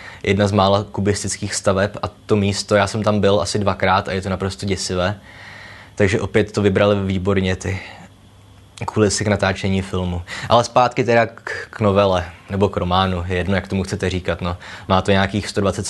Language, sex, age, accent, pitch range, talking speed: Czech, male, 20-39, native, 100-110 Hz, 180 wpm